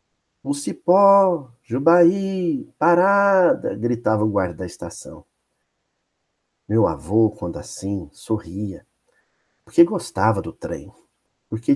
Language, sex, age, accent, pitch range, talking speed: Portuguese, male, 50-69, Brazilian, 95-125 Hz, 100 wpm